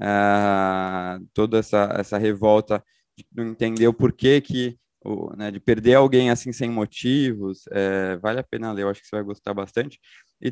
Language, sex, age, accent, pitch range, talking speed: Portuguese, male, 20-39, Brazilian, 95-120 Hz, 190 wpm